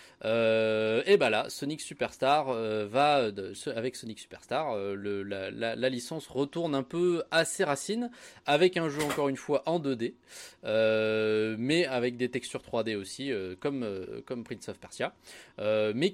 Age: 20-39